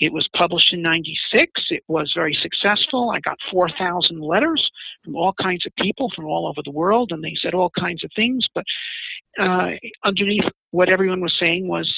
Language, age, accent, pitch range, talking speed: English, 50-69, American, 165-200 Hz, 190 wpm